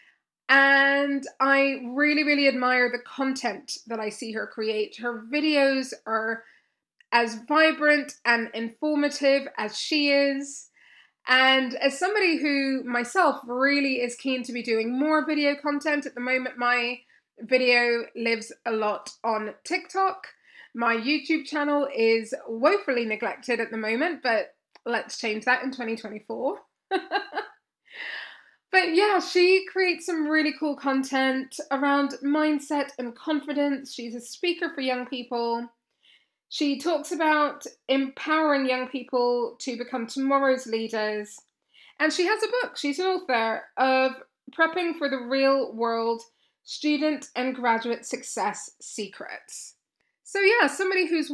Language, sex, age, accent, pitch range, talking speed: English, female, 20-39, British, 240-300 Hz, 130 wpm